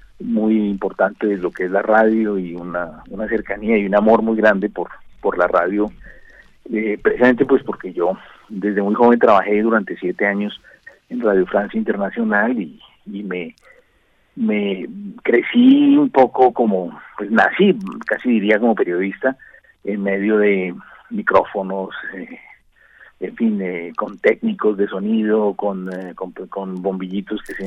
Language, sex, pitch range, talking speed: Spanish, male, 100-130 Hz, 150 wpm